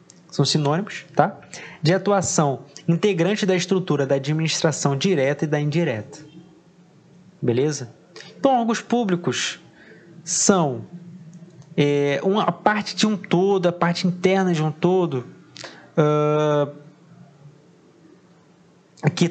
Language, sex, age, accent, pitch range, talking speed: Portuguese, male, 20-39, Brazilian, 150-185 Hz, 95 wpm